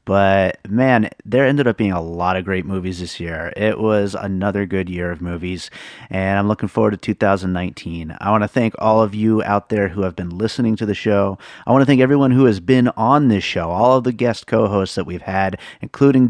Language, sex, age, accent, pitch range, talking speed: English, male, 30-49, American, 95-115 Hz, 230 wpm